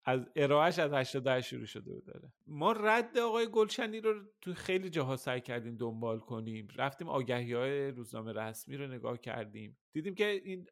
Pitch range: 120-165 Hz